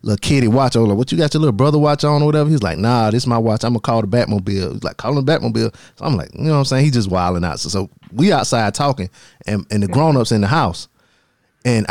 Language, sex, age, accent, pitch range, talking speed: English, male, 20-39, American, 105-130 Hz, 300 wpm